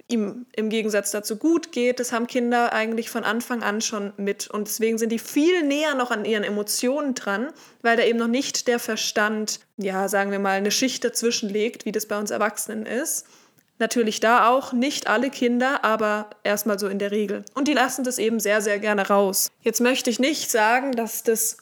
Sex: female